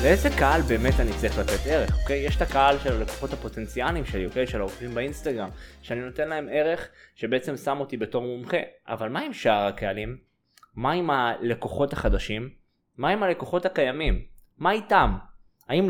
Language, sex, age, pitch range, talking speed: Hebrew, male, 20-39, 125-180 Hz, 165 wpm